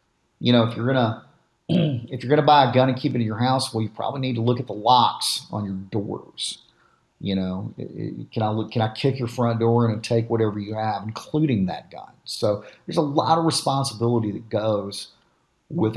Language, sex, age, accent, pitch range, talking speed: English, male, 40-59, American, 110-125 Hz, 225 wpm